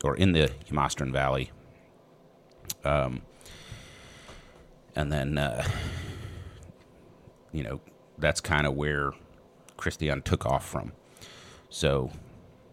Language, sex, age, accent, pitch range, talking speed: English, male, 30-49, American, 75-95 Hz, 95 wpm